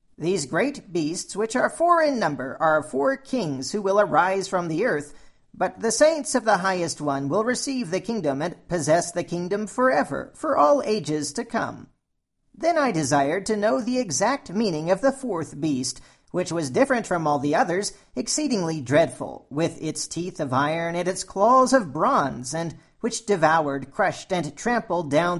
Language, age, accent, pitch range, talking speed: English, 40-59, American, 155-230 Hz, 180 wpm